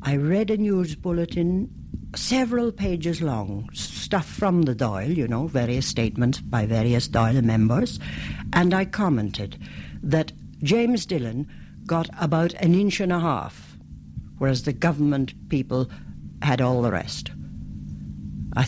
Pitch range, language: 105-170 Hz, English